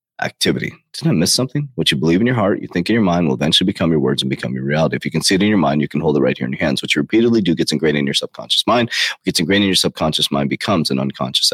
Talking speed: 320 wpm